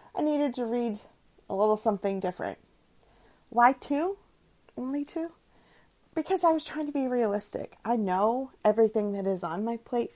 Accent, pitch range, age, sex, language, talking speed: American, 185-235 Hz, 30-49, female, English, 160 wpm